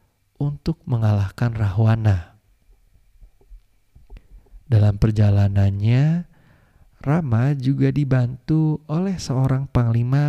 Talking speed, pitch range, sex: 65 wpm, 105-130 Hz, male